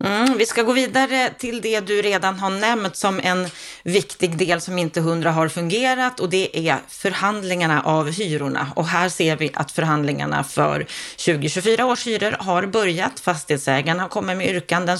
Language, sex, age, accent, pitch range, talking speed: Swedish, female, 30-49, native, 160-205 Hz, 170 wpm